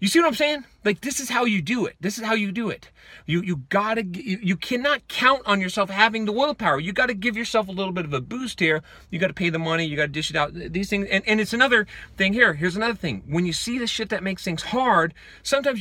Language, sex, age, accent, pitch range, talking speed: English, male, 40-59, American, 165-230 Hz, 275 wpm